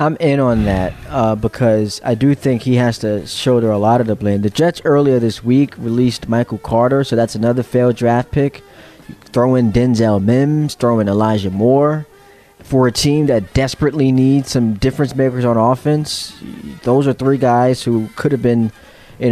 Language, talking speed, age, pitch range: English, 185 wpm, 20-39, 115-145 Hz